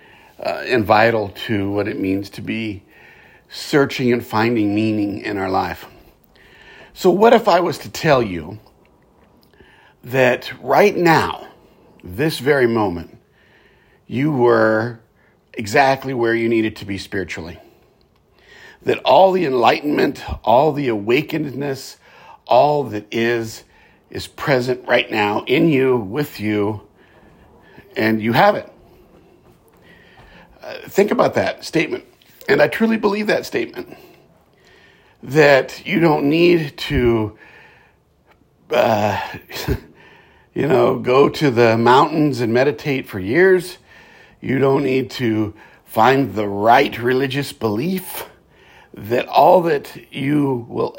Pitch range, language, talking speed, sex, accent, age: 110-150 Hz, English, 120 wpm, male, American, 50-69